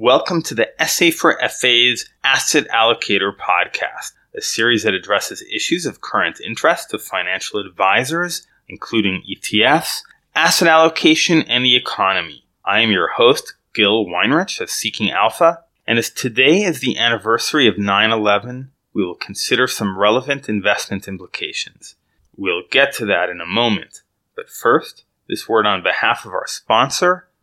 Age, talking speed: 30-49, 145 wpm